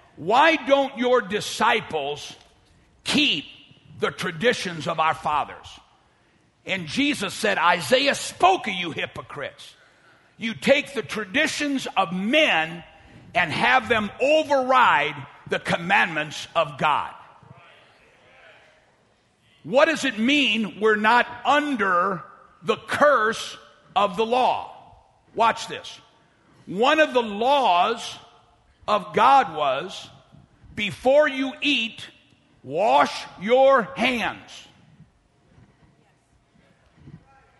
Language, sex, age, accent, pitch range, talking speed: English, male, 60-79, American, 180-270 Hz, 95 wpm